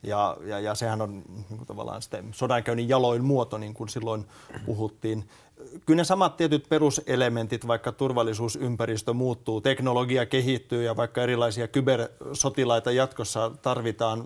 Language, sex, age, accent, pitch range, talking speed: Finnish, male, 30-49, native, 110-130 Hz, 120 wpm